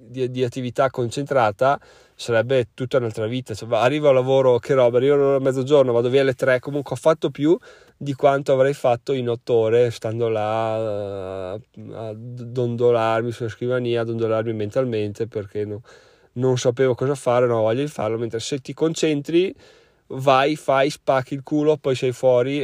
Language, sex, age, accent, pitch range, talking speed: Italian, male, 20-39, native, 115-135 Hz, 175 wpm